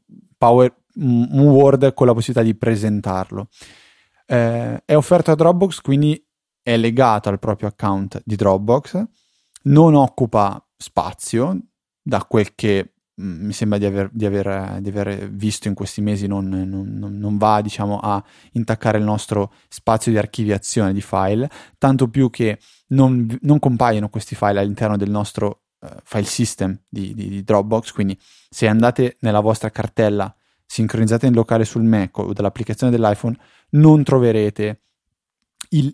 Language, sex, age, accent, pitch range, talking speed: Italian, male, 20-39, native, 100-125 Hz, 140 wpm